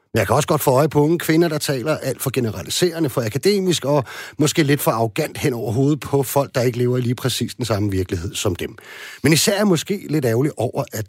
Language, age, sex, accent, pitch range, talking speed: Danish, 40-59, male, native, 115-155 Hz, 240 wpm